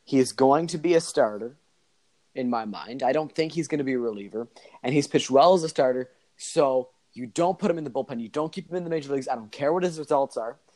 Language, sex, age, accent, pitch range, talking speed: English, male, 30-49, American, 125-165 Hz, 275 wpm